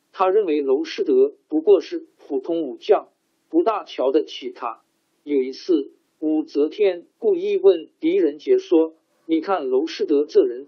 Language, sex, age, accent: Chinese, male, 50-69, native